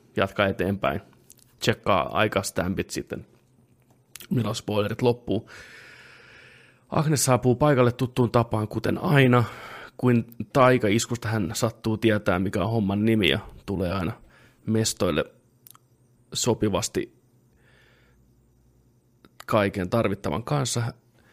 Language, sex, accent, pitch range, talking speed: Finnish, male, native, 105-120 Hz, 90 wpm